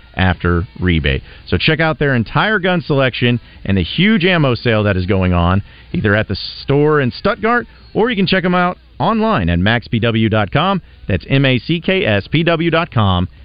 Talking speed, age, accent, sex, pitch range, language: 155 wpm, 40-59, American, male, 90-145 Hz, English